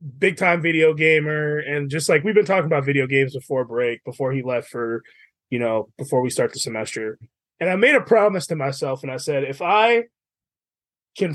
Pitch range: 135-210 Hz